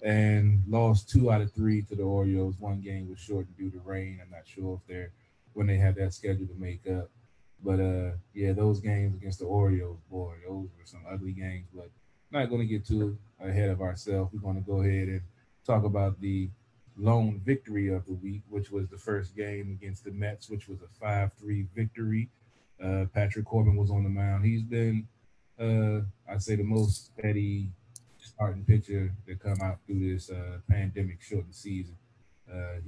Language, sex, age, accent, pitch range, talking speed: English, male, 20-39, American, 95-110 Hz, 195 wpm